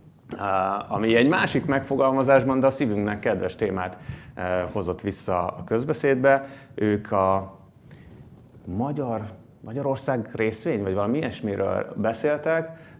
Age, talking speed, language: 30-49, 95 wpm, Hungarian